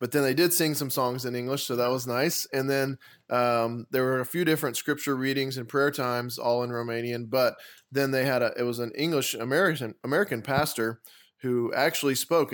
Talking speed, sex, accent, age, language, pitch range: 210 wpm, male, American, 20-39, English, 120-135 Hz